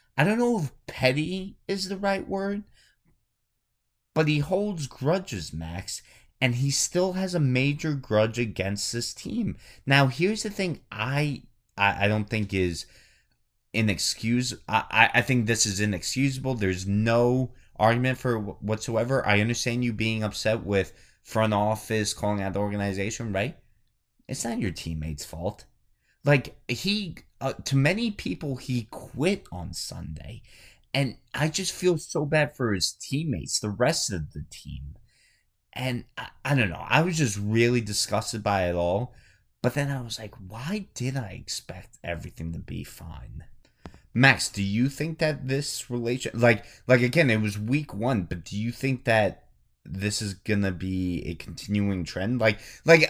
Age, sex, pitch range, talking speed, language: 30-49, male, 105-145 Hz, 160 wpm, English